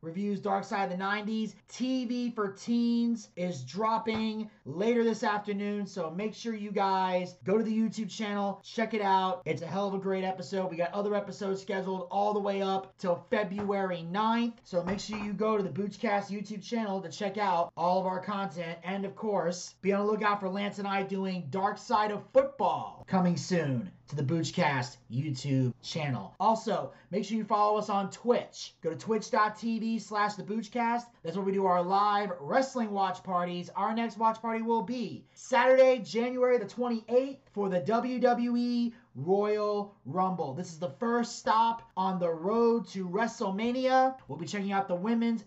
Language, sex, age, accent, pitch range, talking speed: English, male, 30-49, American, 180-225 Hz, 180 wpm